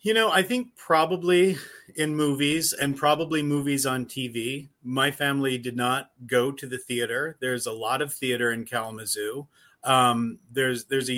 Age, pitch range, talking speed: 40-59, 125-145 Hz, 165 wpm